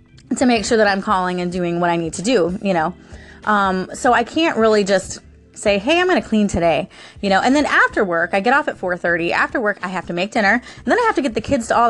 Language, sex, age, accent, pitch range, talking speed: English, female, 20-39, American, 185-245 Hz, 285 wpm